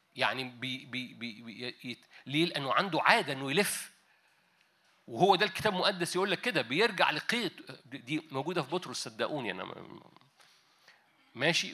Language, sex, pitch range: Arabic, male, 150-200 Hz